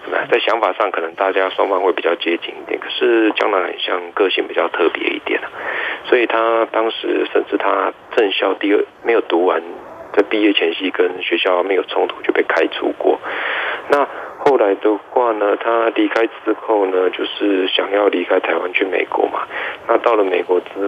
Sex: male